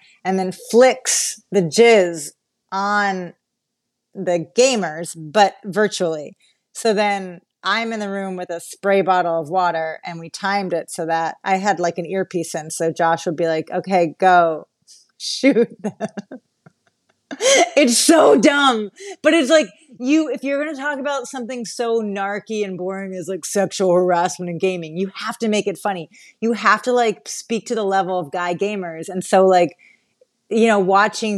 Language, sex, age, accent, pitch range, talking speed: English, female, 30-49, American, 180-225 Hz, 170 wpm